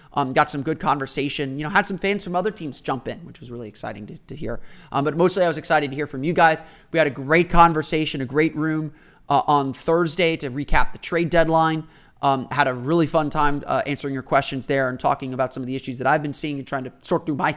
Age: 30-49